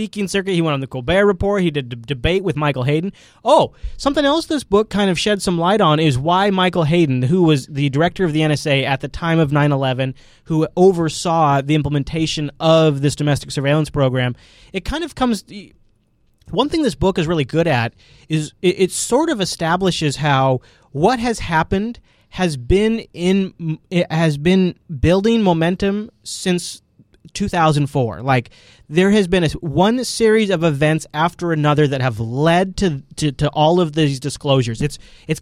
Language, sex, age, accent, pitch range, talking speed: English, male, 20-39, American, 145-195 Hz, 175 wpm